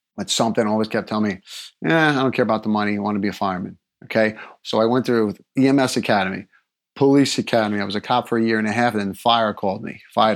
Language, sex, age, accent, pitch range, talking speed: English, male, 30-49, American, 115-145 Hz, 255 wpm